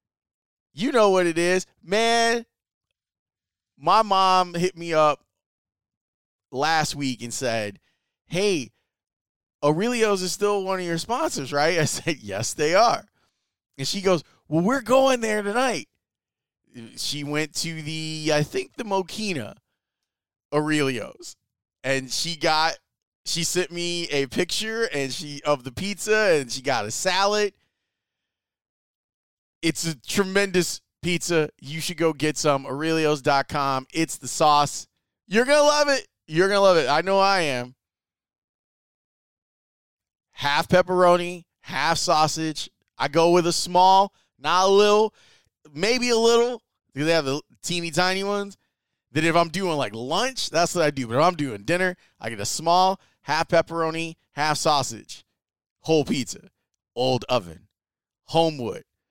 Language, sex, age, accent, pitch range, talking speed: English, male, 20-39, American, 140-190 Hz, 145 wpm